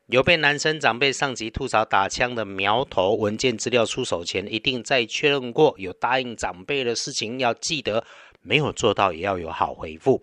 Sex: male